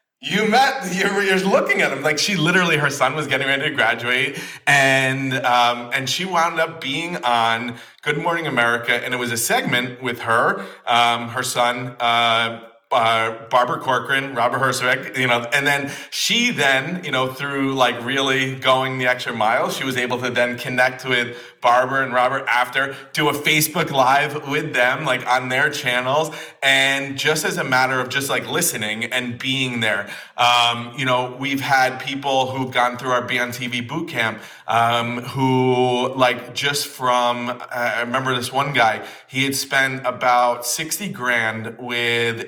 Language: English